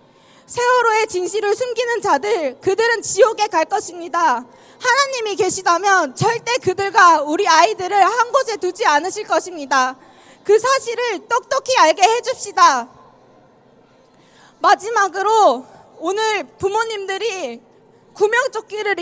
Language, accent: Korean, native